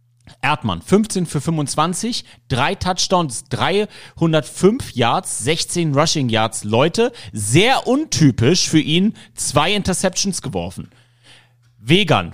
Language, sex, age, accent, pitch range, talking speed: German, male, 30-49, German, 120-170 Hz, 95 wpm